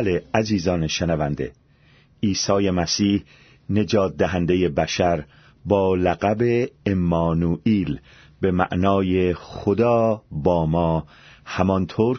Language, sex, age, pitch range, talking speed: Persian, male, 40-59, 85-120 Hz, 80 wpm